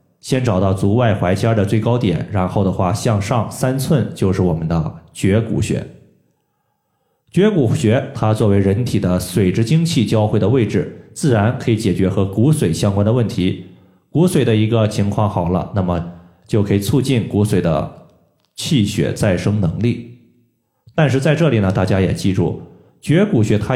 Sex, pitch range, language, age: male, 95-120 Hz, Chinese, 20-39